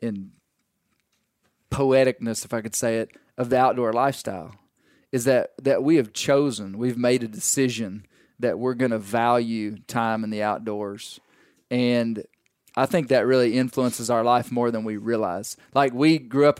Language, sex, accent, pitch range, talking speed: English, male, American, 110-130 Hz, 165 wpm